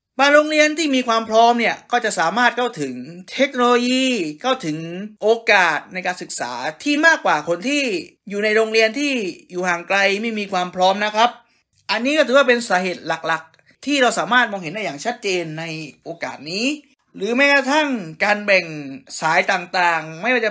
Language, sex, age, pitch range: Thai, male, 20-39, 175-250 Hz